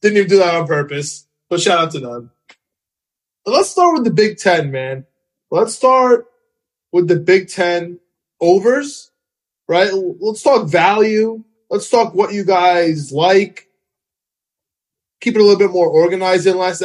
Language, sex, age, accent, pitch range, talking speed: English, male, 20-39, American, 150-200 Hz, 155 wpm